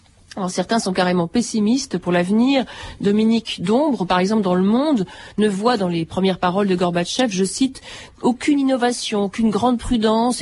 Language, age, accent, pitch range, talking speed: French, 40-59, French, 185-235 Hz, 165 wpm